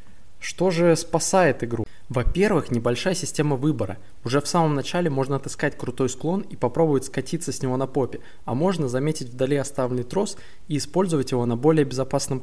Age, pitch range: 20-39, 120-155 Hz